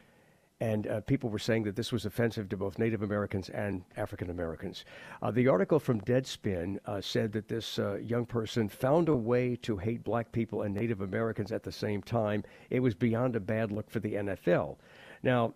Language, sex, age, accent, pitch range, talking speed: English, male, 60-79, American, 105-130 Hz, 200 wpm